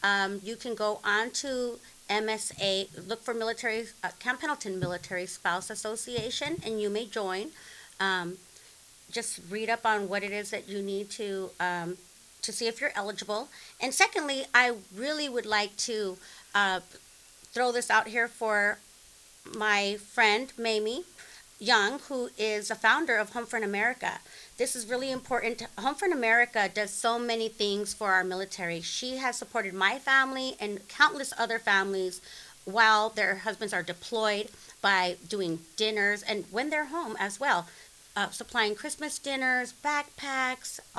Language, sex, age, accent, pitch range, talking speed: English, female, 40-59, American, 200-245 Hz, 155 wpm